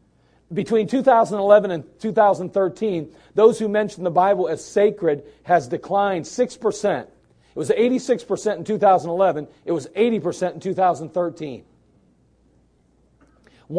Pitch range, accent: 160-205 Hz, American